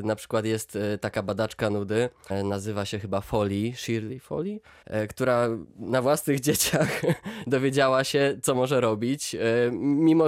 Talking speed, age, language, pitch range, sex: 125 wpm, 20-39, Polish, 115-155 Hz, male